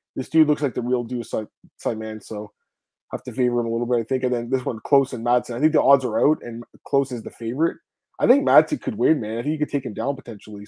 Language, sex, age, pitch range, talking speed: English, male, 20-39, 120-145 Hz, 290 wpm